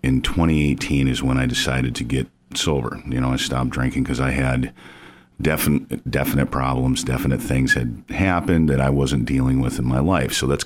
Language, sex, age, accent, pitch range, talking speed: English, male, 40-59, American, 65-75 Hz, 190 wpm